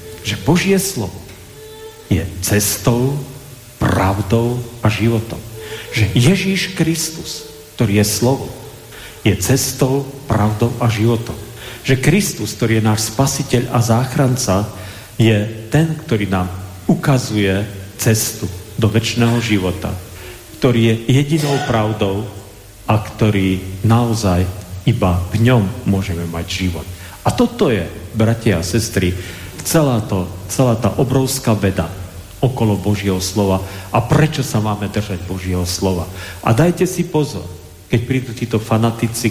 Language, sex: Slovak, male